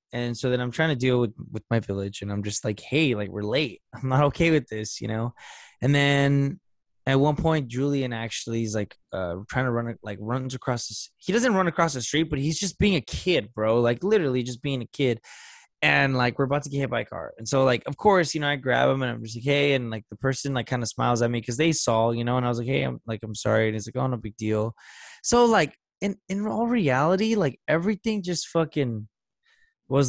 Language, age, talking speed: English, 20-39, 255 wpm